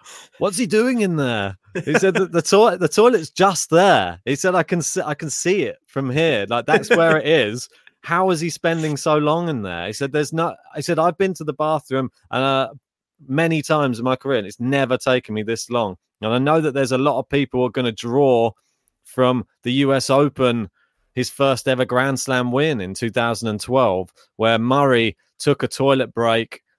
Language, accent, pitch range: English, British, 115-140 Hz